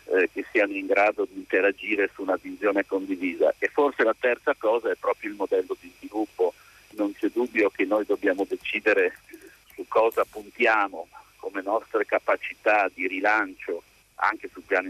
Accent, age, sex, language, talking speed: native, 50-69, male, Italian, 160 wpm